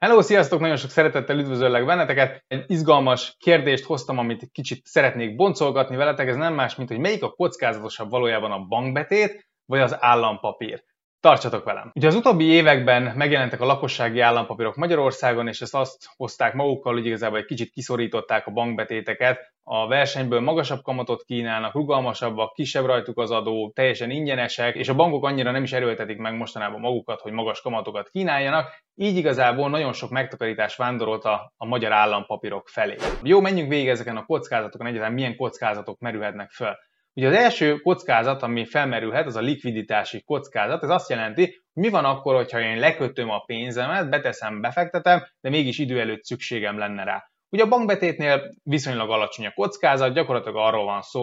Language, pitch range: Hungarian, 115-145 Hz